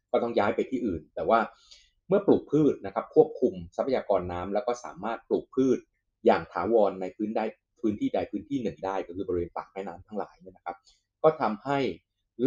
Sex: male